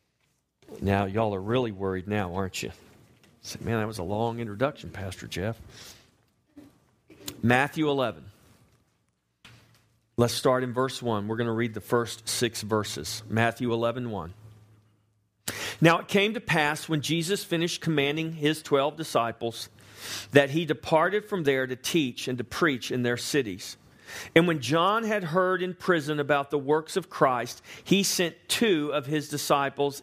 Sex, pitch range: male, 105-150 Hz